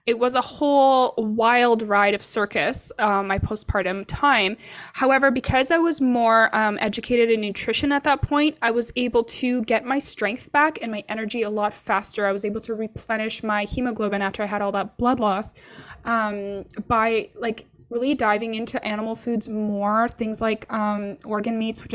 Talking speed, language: 185 wpm, English